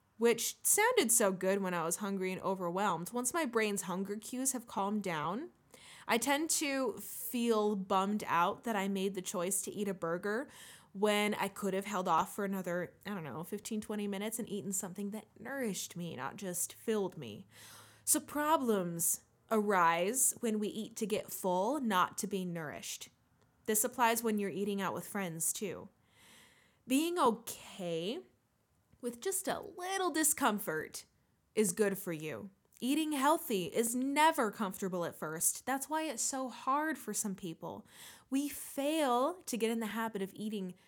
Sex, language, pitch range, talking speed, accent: female, English, 190-250 Hz, 165 wpm, American